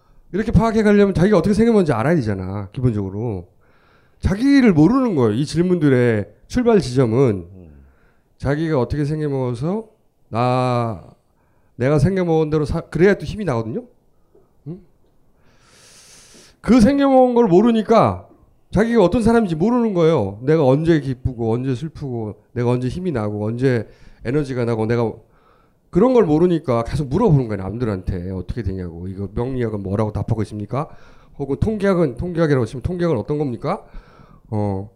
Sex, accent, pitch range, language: male, native, 115-170 Hz, Korean